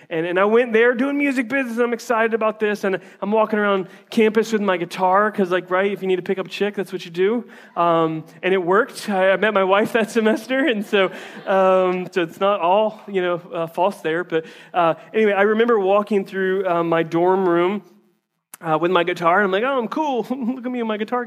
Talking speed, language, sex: 240 wpm, English, male